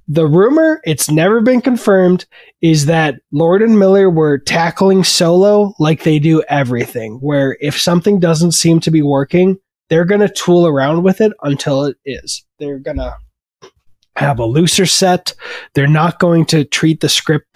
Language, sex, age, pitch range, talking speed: English, male, 20-39, 135-175 Hz, 170 wpm